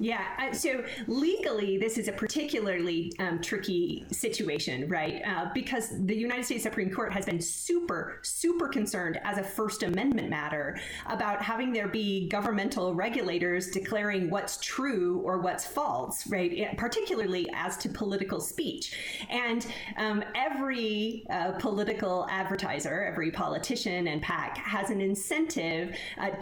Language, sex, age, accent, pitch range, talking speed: English, female, 30-49, American, 180-220 Hz, 140 wpm